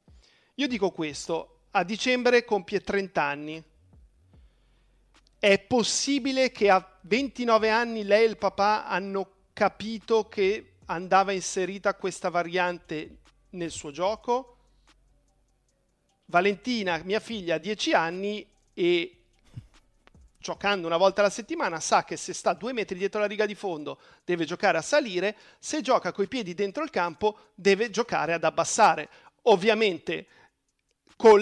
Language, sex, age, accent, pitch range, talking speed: Italian, male, 40-59, native, 170-220 Hz, 130 wpm